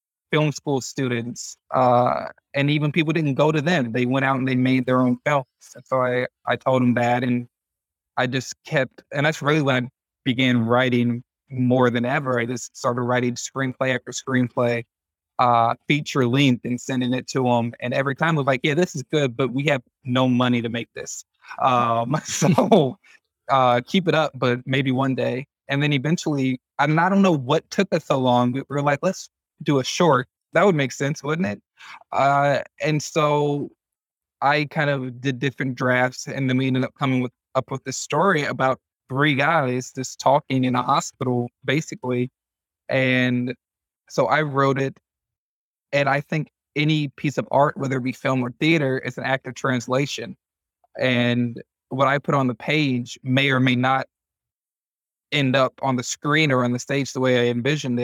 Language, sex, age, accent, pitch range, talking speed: English, male, 20-39, American, 125-140 Hz, 190 wpm